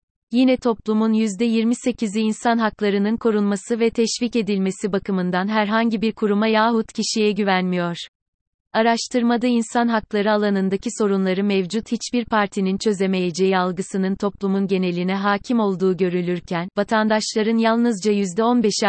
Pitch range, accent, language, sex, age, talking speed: 195-225 Hz, native, Turkish, female, 30-49, 110 wpm